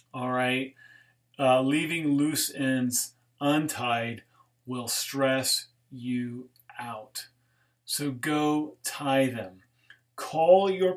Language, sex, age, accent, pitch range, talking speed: English, male, 30-49, American, 125-155 Hz, 95 wpm